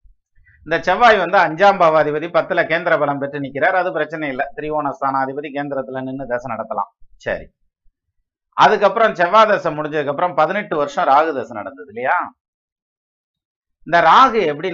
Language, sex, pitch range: Tamil, male, 135-170 Hz